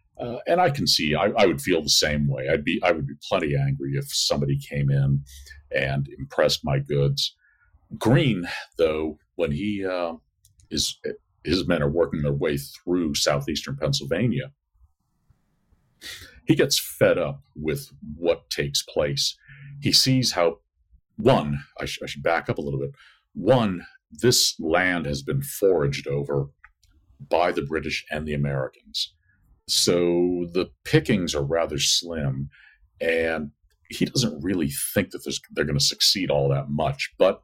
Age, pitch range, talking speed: 50-69, 70-100 Hz, 150 wpm